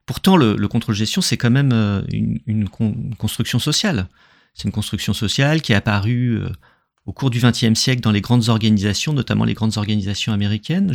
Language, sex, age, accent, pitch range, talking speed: French, male, 40-59, French, 110-155 Hz, 190 wpm